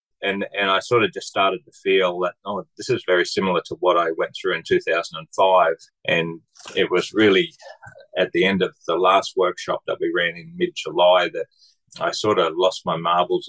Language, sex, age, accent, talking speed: English, male, 30-49, Australian, 200 wpm